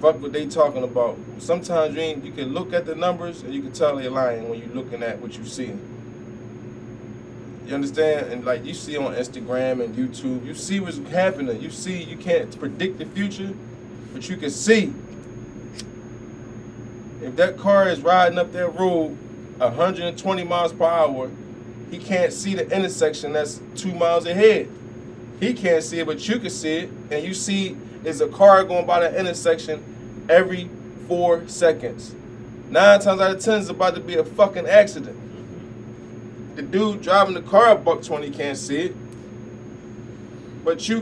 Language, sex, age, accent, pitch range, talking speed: English, male, 20-39, American, 130-185 Hz, 175 wpm